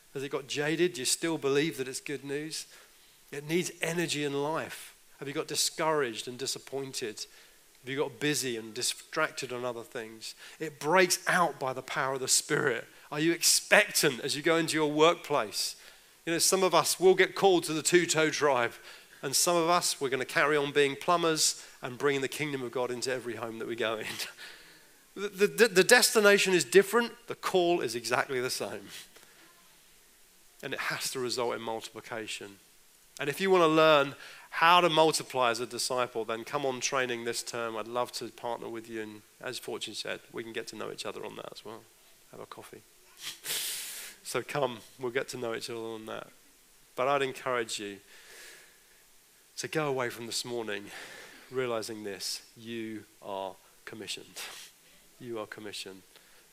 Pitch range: 120-165 Hz